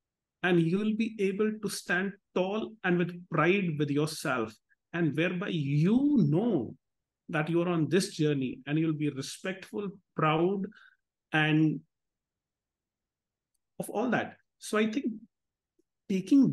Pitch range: 145-200 Hz